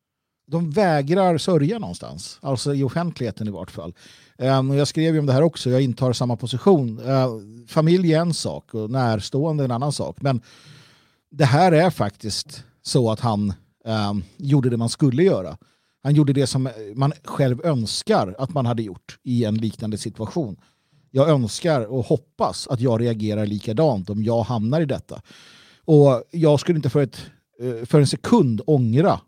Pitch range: 110-145 Hz